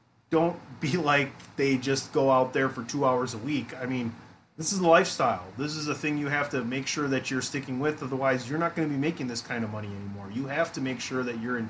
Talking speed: 265 wpm